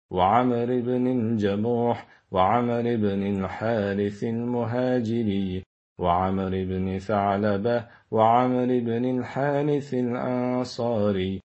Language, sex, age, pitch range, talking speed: Turkish, male, 40-59, 110-125 Hz, 75 wpm